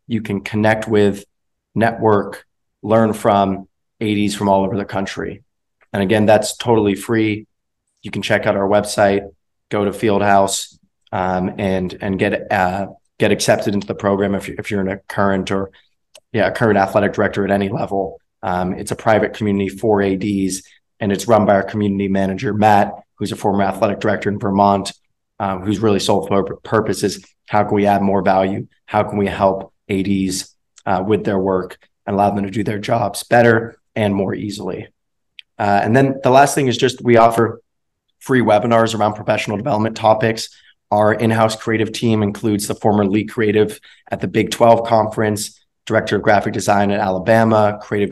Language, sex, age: English, male, 30-49